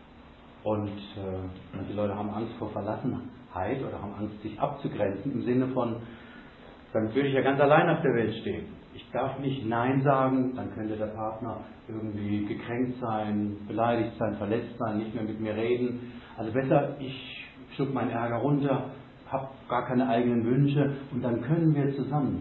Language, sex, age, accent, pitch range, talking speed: German, male, 50-69, German, 105-130 Hz, 170 wpm